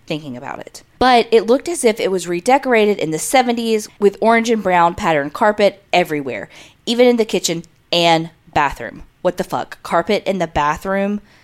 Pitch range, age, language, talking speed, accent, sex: 180-235 Hz, 20-39, English, 180 wpm, American, female